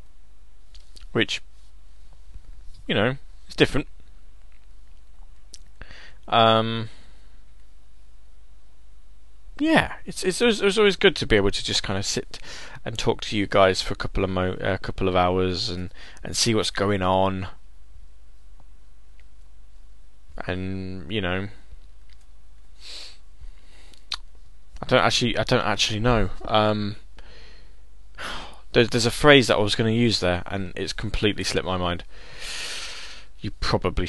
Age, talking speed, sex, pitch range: 20-39, 120 wpm, male, 80-120 Hz